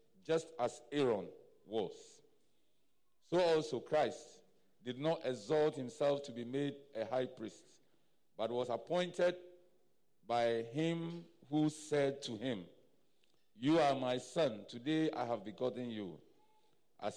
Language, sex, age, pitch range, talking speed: English, male, 50-69, 125-170 Hz, 125 wpm